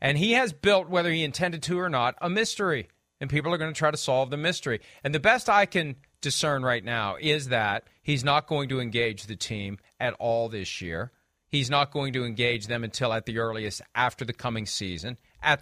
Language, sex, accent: English, male, American